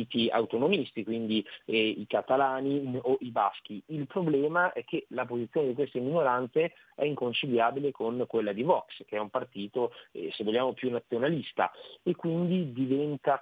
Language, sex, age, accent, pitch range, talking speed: Italian, male, 40-59, native, 120-145 Hz, 155 wpm